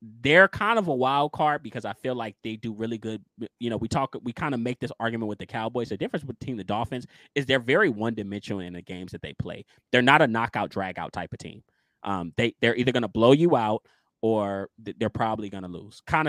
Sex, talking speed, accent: male, 240 wpm, American